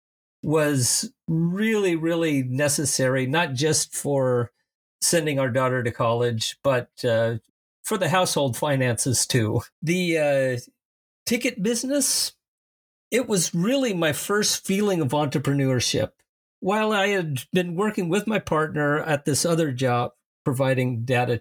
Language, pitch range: English, 130-170 Hz